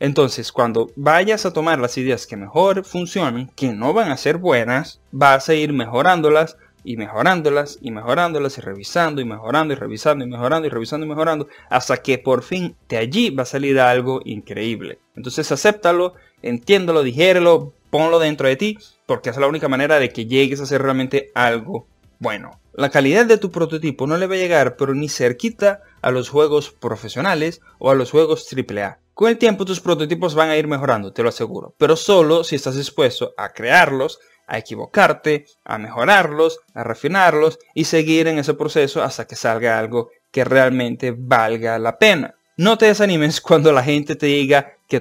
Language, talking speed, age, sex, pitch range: Spanish, 185 wpm, 20-39, male, 125-160 Hz